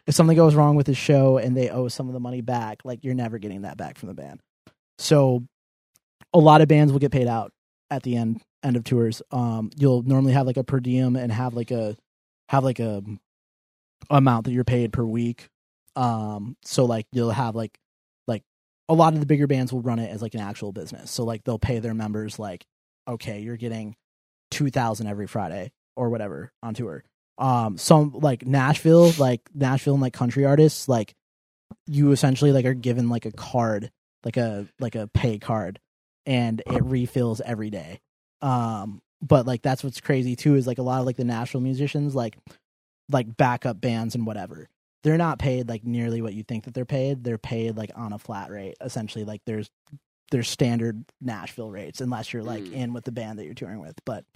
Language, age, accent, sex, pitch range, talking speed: English, 20-39, American, male, 115-135 Hz, 210 wpm